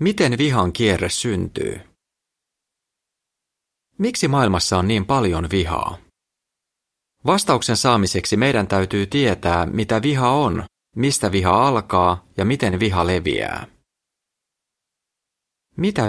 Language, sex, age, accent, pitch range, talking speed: Finnish, male, 30-49, native, 90-120 Hz, 95 wpm